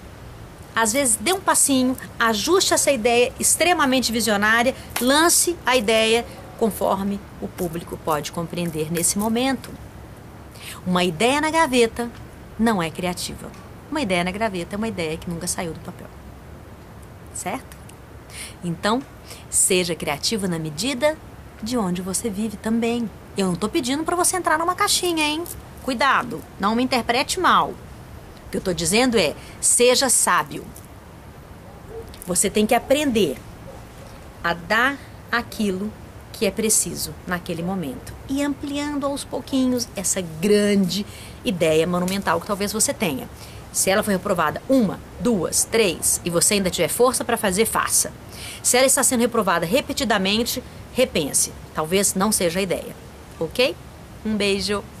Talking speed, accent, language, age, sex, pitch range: 140 wpm, Brazilian, Portuguese, 30-49, female, 190-260 Hz